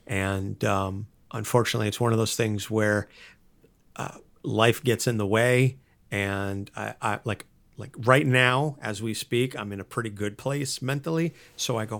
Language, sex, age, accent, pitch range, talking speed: English, male, 50-69, American, 105-125 Hz, 175 wpm